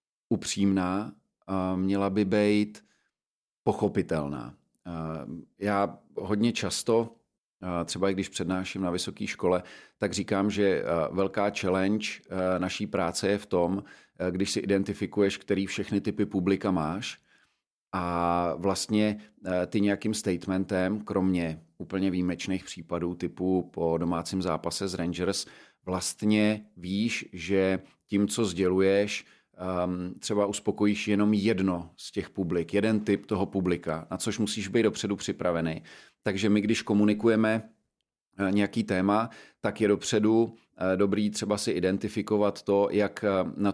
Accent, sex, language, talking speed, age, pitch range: native, male, Czech, 120 wpm, 40-59, 90-105 Hz